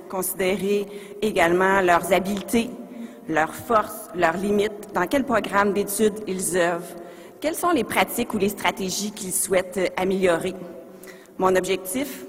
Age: 40-59